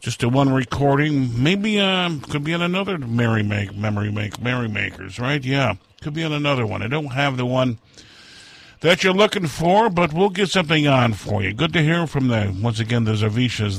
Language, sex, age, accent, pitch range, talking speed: English, male, 50-69, American, 120-165 Hz, 210 wpm